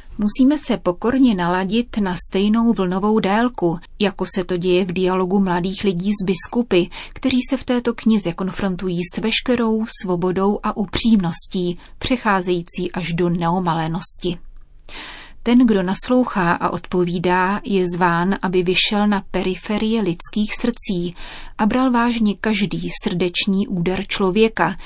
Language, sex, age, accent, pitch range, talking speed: Czech, female, 30-49, native, 180-215 Hz, 130 wpm